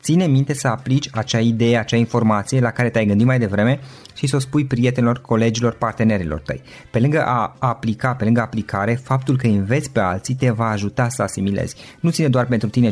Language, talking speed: Romanian, 205 wpm